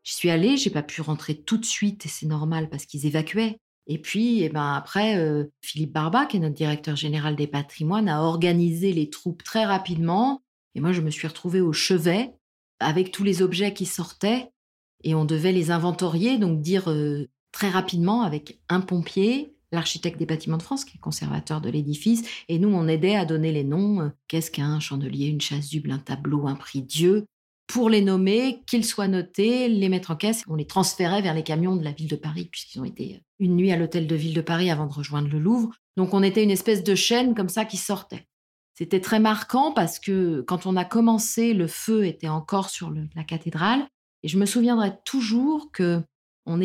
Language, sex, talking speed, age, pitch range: French, female, 210 wpm, 40-59, 160-215 Hz